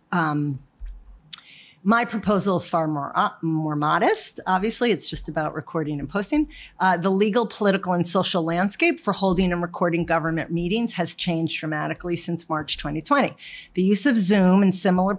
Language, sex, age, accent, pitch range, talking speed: English, female, 40-59, American, 170-215 Hz, 160 wpm